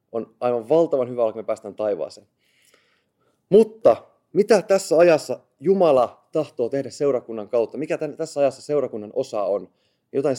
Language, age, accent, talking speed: Finnish, 20-39, native, 145 wpm